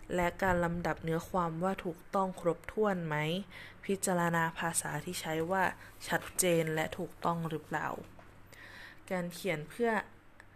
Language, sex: Thai, female